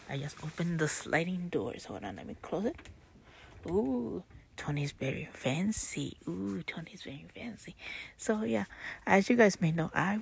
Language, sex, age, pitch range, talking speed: English, female, 30-49, 150-185 Hz, 165 wpm